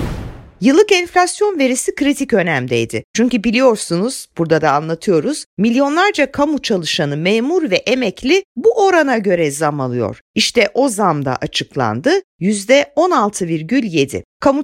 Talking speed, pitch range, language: 110 wpm, 180-285 Hz, Turkish